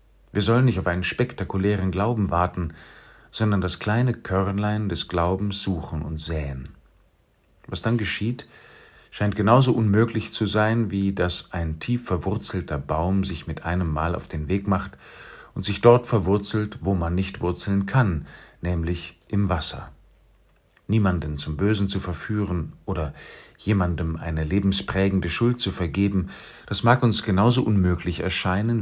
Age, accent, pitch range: 50-69, German, 85-105 Hz